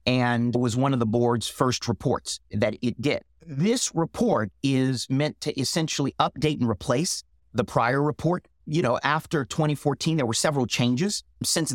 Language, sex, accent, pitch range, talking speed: English, male, American, 120-155 Hz, 165 wpm